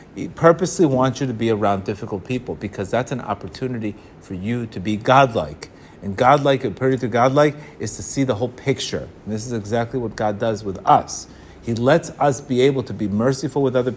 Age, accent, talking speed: 30-49, American, 205 wpm